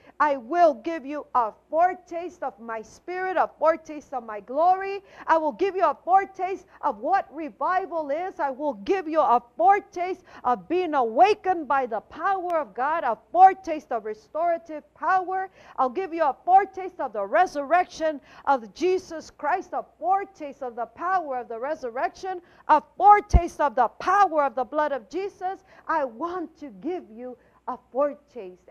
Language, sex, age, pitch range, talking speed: English, female, 50-69, 260-355 Hz, 165 wpm